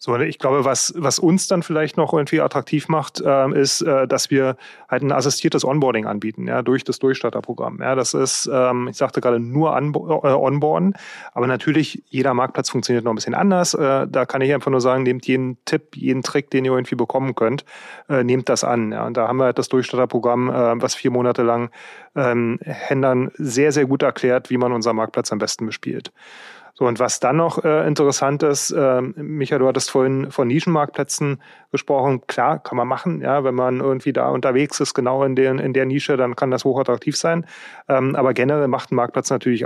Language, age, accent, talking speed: German, 30-49, German, 210 wpm